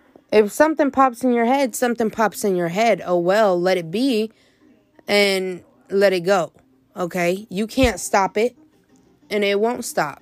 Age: 20-39